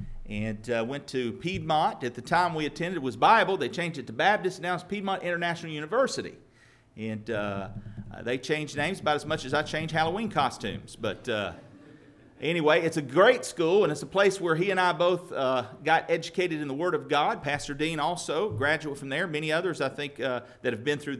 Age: 40-59